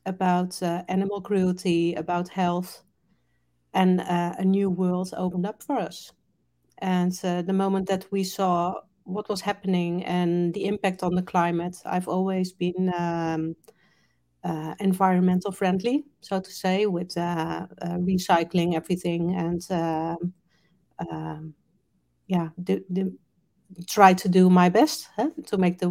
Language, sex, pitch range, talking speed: English, female, 175-200 Hz, 135 wpm